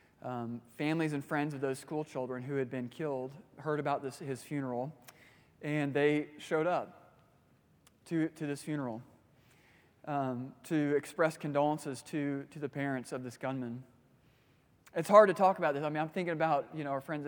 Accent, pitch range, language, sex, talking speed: American, 130-160 Hz, English, male, 175 wpm